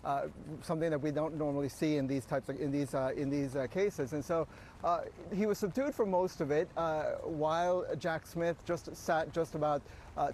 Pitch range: 145-170 Hz